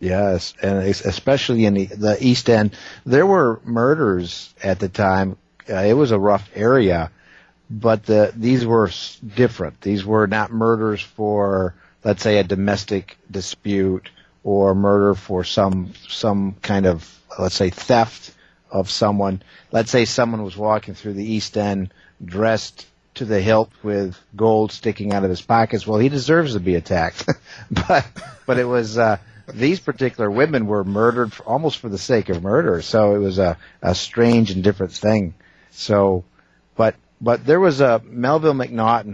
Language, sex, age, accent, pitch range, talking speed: English, male, 50-69, American, 100-115 Hz, 165 wpm